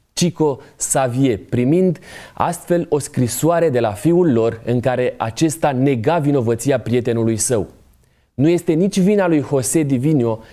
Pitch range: 115-155 Hz